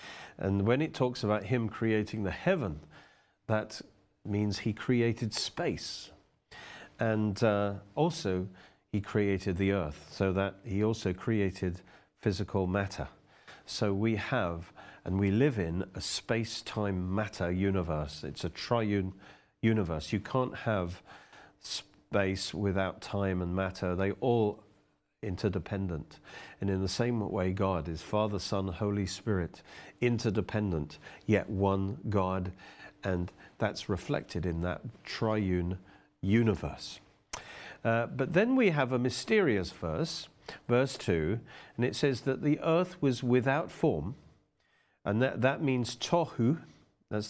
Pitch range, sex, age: 95-120 Hz, male, 40-59